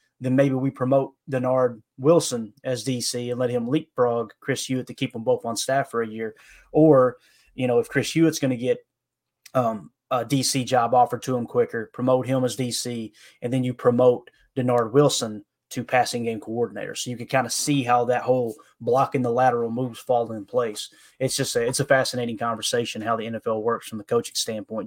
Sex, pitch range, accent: male, 120-145 Hz, American